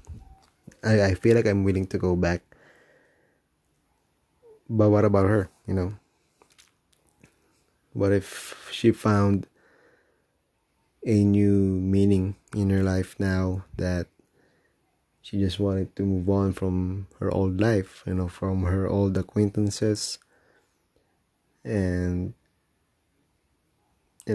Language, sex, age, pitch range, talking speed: English, male, 20-39, 95-105 Hz, 110 wpm